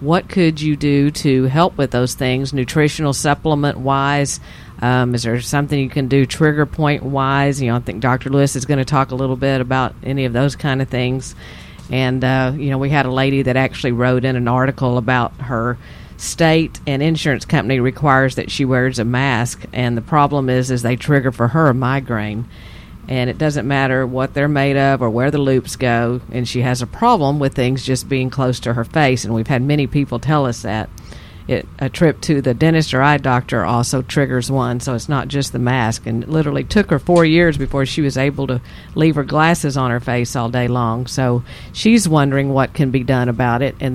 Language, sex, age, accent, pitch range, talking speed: English, female, 50-69, American, 125-145 Hz, 215 wpm